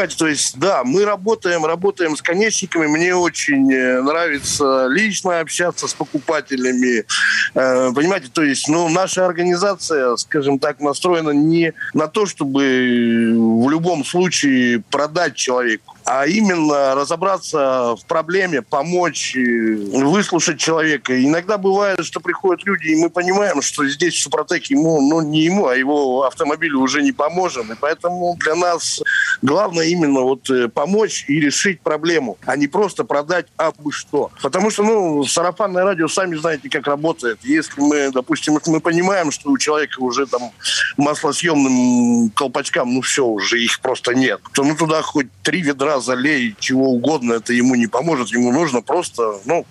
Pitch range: 135-180 Hz